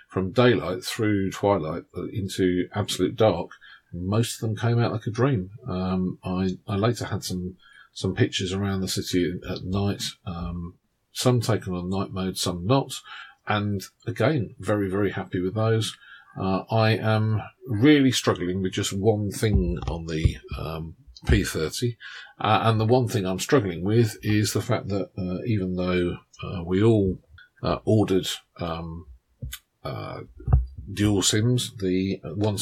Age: 40-59